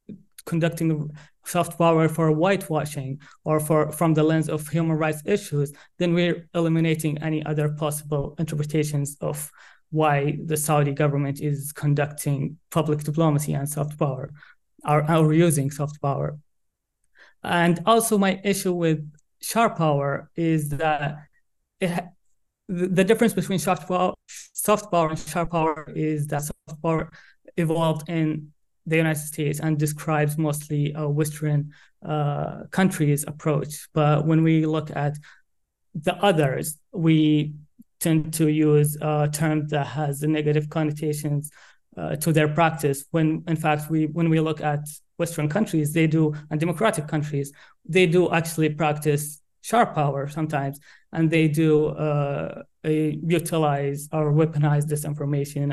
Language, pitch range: English, 150-165 Hz